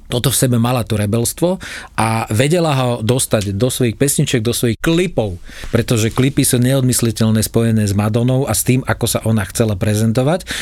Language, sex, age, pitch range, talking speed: Slovak, male, 40-59, 115-155 Hz, 175 wpm